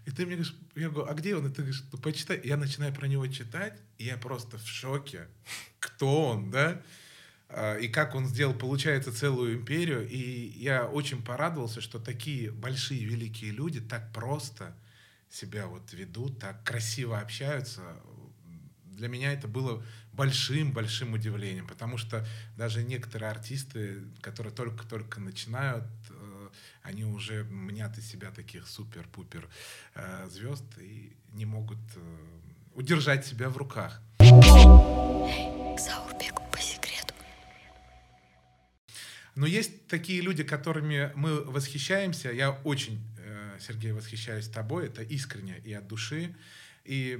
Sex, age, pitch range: male, 30-49, 110-140 Hz